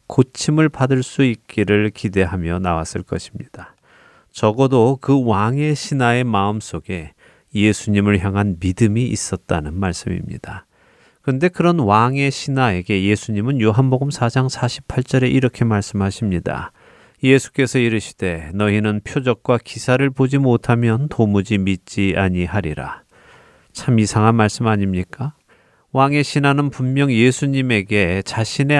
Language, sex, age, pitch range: Korean, male, 30-49, 100-130 Hz